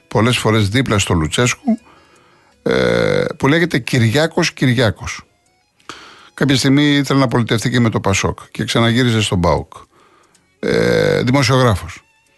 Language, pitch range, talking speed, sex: Greek, 110-175 Hz, 110 wpm, male